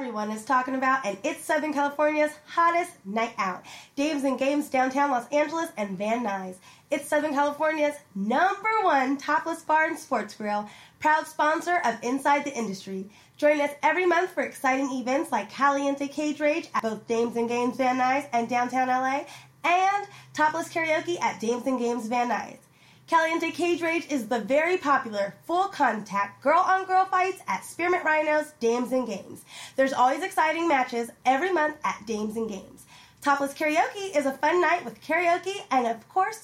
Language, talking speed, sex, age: English, 170 wpm, female, 20-39